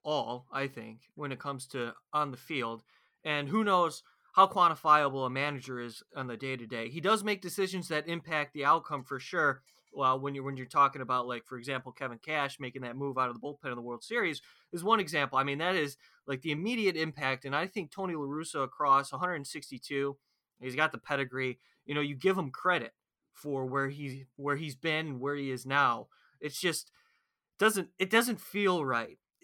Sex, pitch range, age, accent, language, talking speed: male, 135-170 Hz, 20-39, American, English, 205 wpm